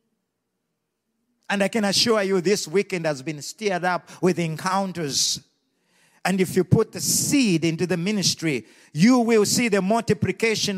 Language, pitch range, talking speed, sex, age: English, 170-245 Hz, 150 wpm, male, 50-69